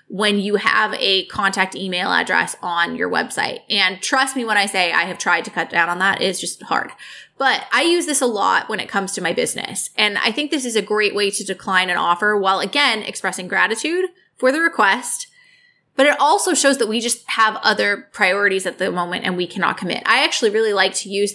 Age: 20-39